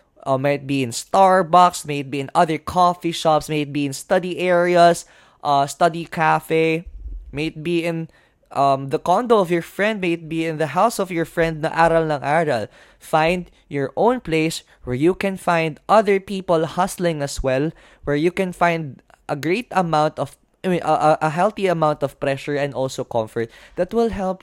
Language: Filipino